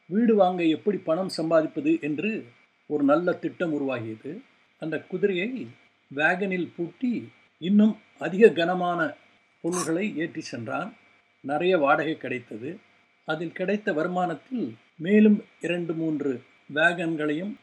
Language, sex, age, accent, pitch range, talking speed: Tamil, male, 50-69, native, 150-190 Hz, 100 wpm